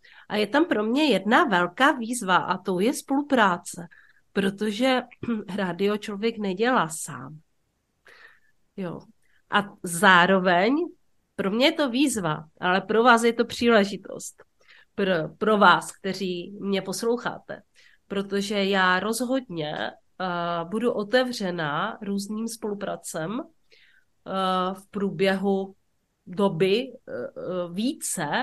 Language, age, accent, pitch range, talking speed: Czech, 40-59, native, 190-240 Hz, 105 wpm